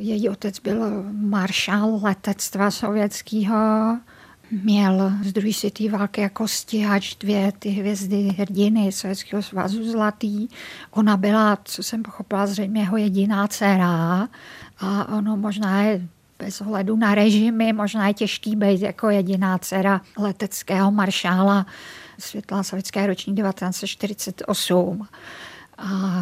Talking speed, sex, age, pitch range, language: 115 wpm, female, 50-69, 195-215 Hz, Czech